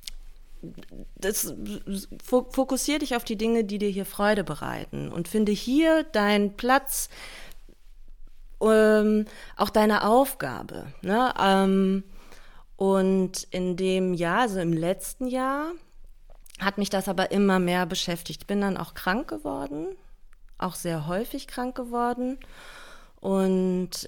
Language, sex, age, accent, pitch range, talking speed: German, female, 30-49, German, 170-220 Hz, 115 wpm